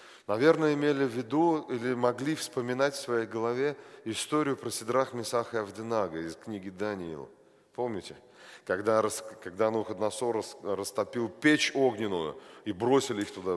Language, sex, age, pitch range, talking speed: Russian, male, 40-59, 105-135 Hz, 135 wpm